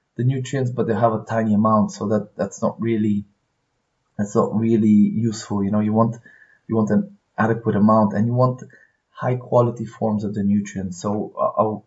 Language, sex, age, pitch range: English, male, 20-39, 100-120 Hz